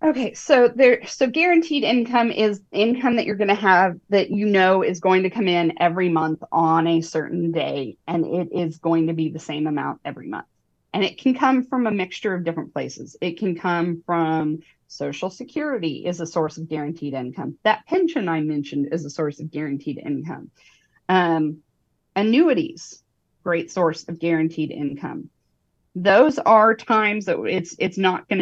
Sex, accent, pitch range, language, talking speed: female, American, 165-215 Hz, English, 180 wpm